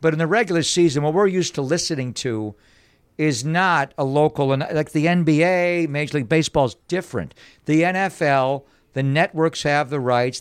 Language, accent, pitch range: English, American, 125-160 Hz